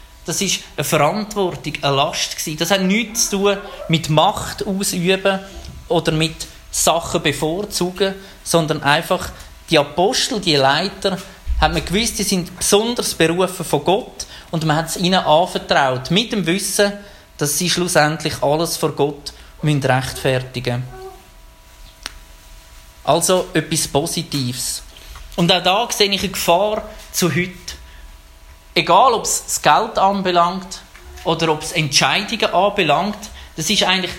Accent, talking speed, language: Austrian, 135 wpm, German